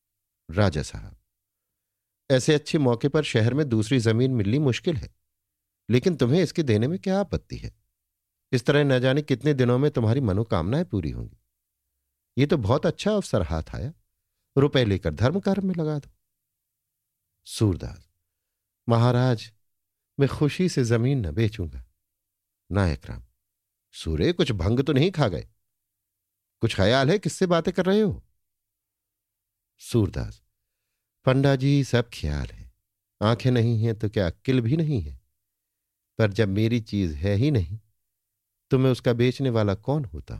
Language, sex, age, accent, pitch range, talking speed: Hindi, male, 50-69, native, 100-130 Hz, 145 wpm